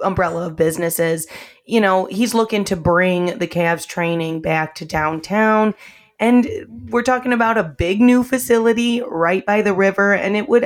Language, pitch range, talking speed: English, 170-210 Hz, 170 wpm